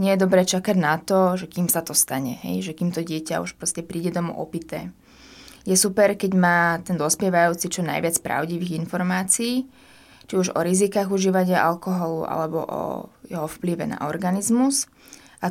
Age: 20-39